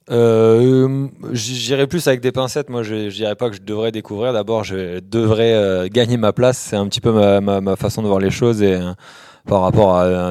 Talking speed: 240 wpm